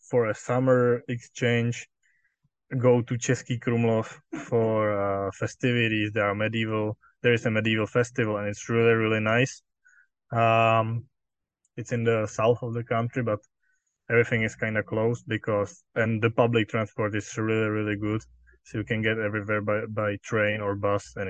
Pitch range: 105-120 Hz